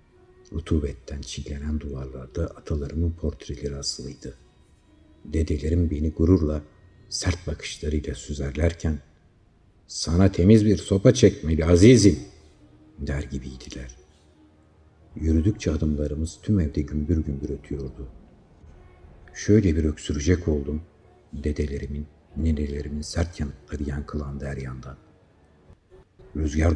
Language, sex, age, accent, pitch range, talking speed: Turkish, male, 60-79, native, 75-95 Hz, 85 wpm